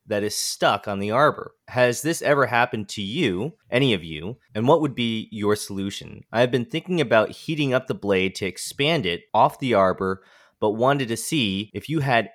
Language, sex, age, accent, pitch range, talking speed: English, male, 20-39, American, 95-120 Hz, 205 wpm